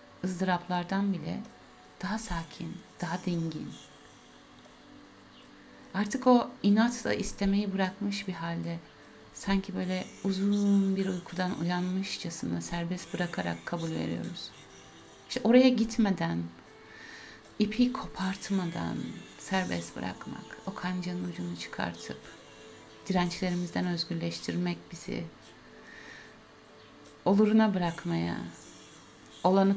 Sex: female